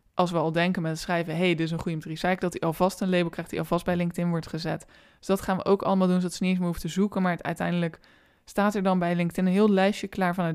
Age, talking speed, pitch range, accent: 20-39, 315 wpm, 175-195 Hz, Dutch